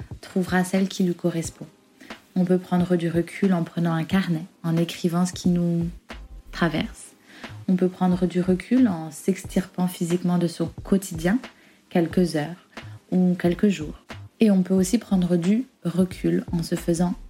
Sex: female